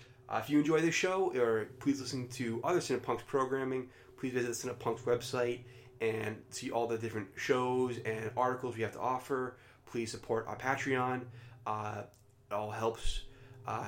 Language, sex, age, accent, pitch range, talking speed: English, male, 20-39, American, 105-125 Hz, 170 wpm